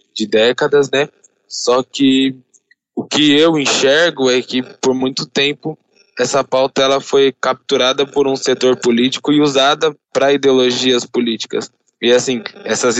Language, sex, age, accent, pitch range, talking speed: Portuguese, male, 10-29, Brazilian, 120-135 Hz, 145 wpm